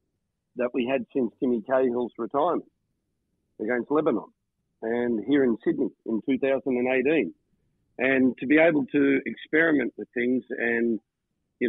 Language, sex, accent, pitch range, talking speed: English, male, Australian, 110-130 Hz, 130 wpm